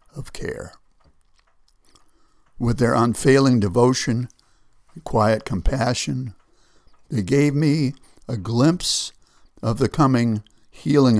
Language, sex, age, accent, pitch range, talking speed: English, male, 60-79, American, 105-135 Hz, 90 wpm